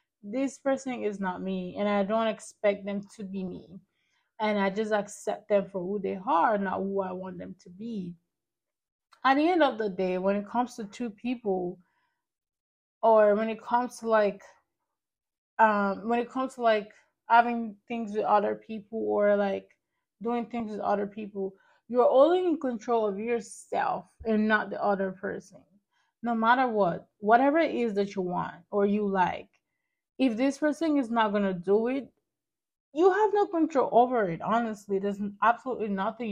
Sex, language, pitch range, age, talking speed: female, English, 195-235 Hz, 20-39, 175 wpm